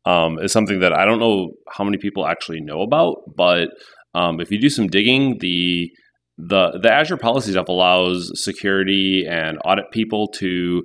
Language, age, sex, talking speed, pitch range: English, 30-49, male, 175 wpm, 85-100 Hz